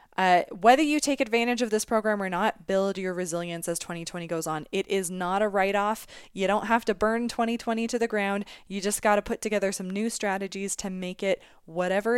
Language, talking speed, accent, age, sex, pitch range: English, 215 wpm, American, 20-39, female, 185-240 Hz